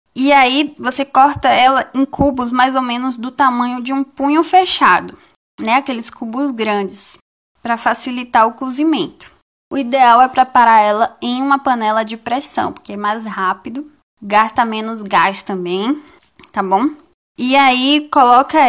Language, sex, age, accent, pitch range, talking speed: Portuguese, female, 10-29, Brazilian, 215-270 Hz, 150 wpm